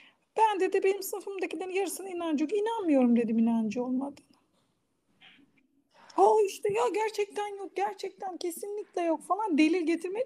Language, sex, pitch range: Turkish, female, 255-390 Hz